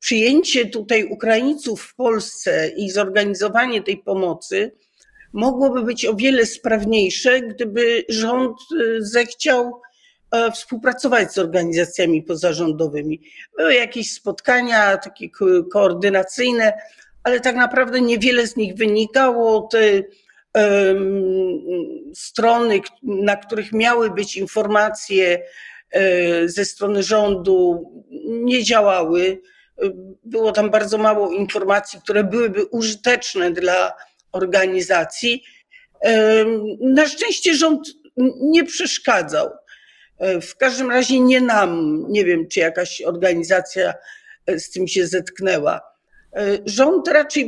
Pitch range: 195-255 Hz